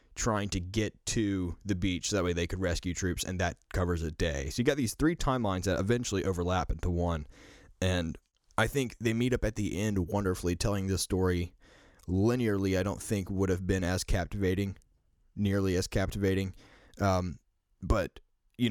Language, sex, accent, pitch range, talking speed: English, male, American, 90-105 Hz, 185 wpm